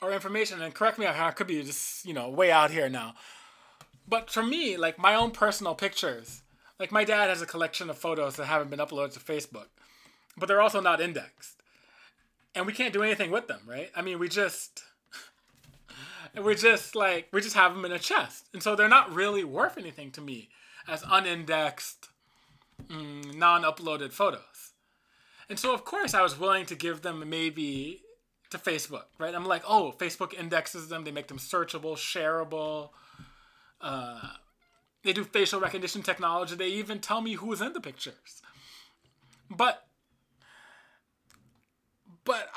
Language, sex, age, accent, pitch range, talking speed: English, male, 20-39, American, 160-210 Hz, 170 wpm